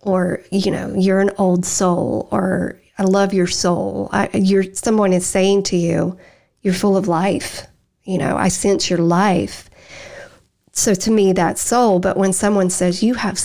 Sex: female